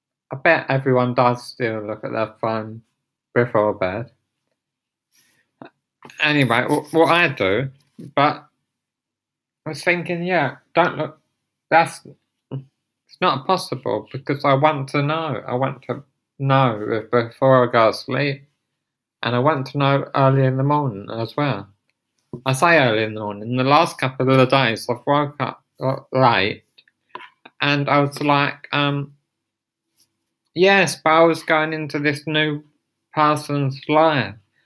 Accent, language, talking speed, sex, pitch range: British, English, 145 wpm, male, 125-155 Hz